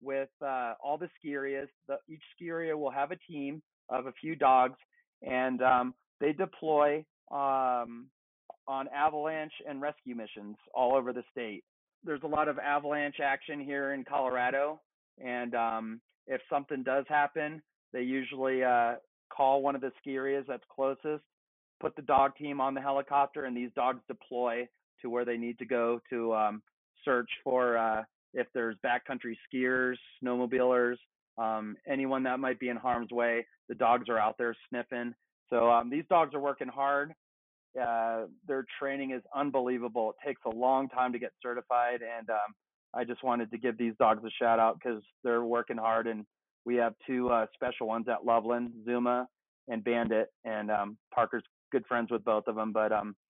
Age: 40-59